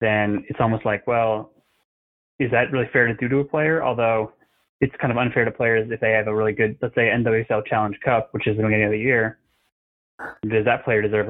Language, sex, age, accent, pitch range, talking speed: English, male, 20-39, American, 110-130 Hz, 230 wpm